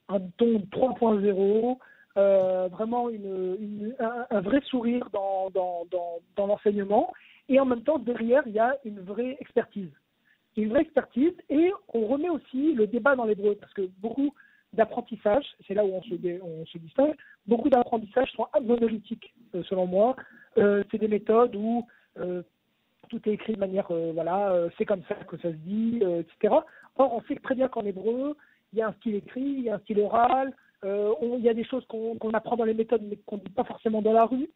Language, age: French, 50-69